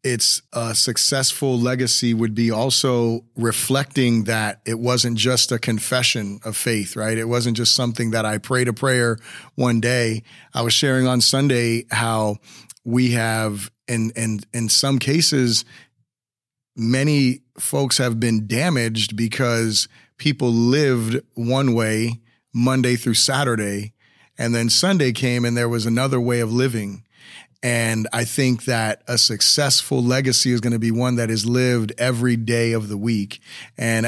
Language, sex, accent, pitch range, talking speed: English, male, American, 115-130 Hz, 150 wpm